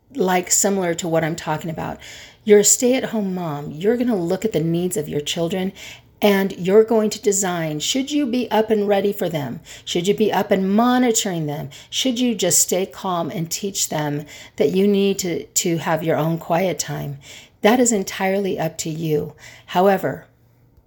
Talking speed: 190 wpm